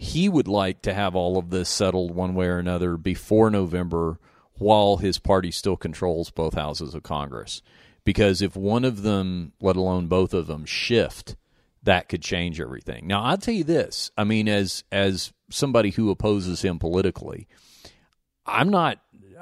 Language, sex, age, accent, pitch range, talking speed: English, male, 40-59, American, 85-110 Hz, 170 wpm